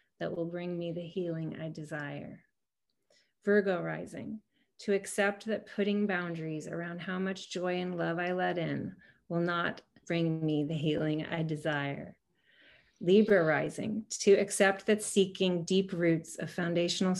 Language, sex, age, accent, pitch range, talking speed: English, female, 30-49, American, 165-195 Hz, 145 wpm